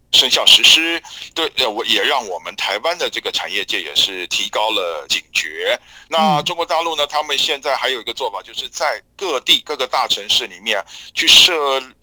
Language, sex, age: Chinese, male, 50-69